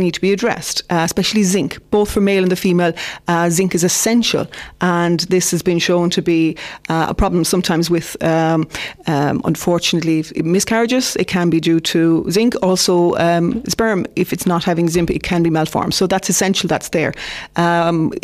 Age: 30-49